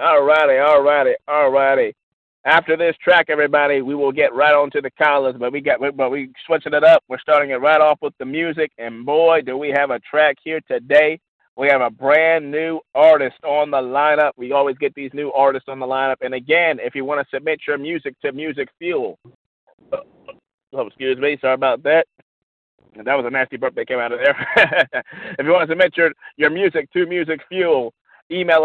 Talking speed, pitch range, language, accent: 210 wpm, 130-160 Hz, English, American